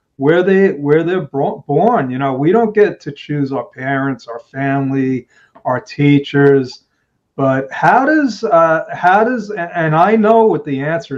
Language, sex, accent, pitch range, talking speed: English, male, American, 135-160 Hz, 170 wpm